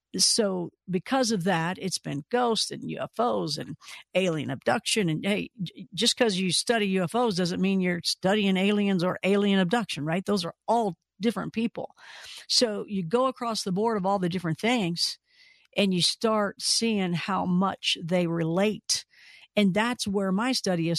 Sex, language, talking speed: female, English, 165 wpm